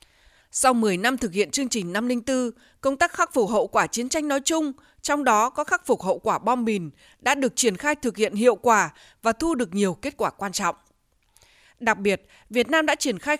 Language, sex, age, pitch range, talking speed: Vietnamese, female, 20-39, 210-280 Hz, 225 wpm